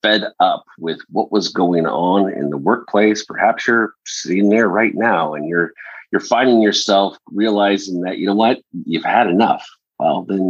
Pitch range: 85-105 Hz